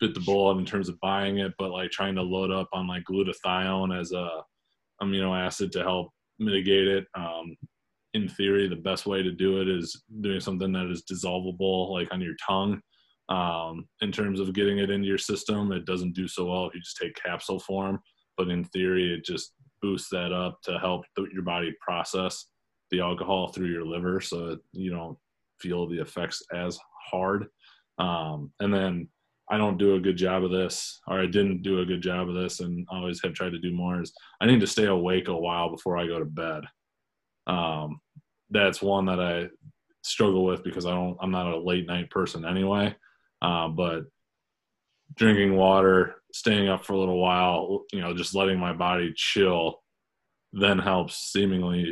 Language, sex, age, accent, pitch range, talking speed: English, male, 20-39, American, 90-95 Hz, 195 wpm